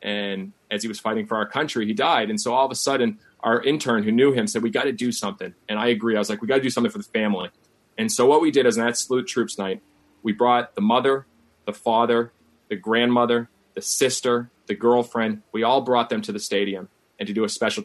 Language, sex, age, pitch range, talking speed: English, male, 30-49, 105-120 Hz, 255 wpm